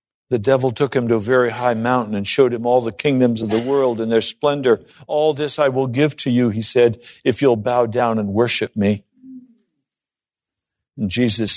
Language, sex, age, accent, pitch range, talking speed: English, male, 60-79, American, 115-180 Hz, 200 wpm